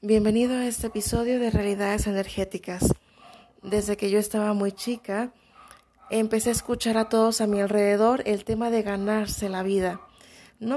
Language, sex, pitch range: Spanish, female, 205-235 Hz